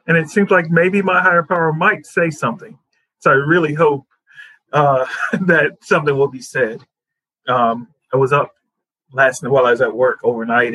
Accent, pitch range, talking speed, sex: American, 125-155 Hz, 185 wpm, male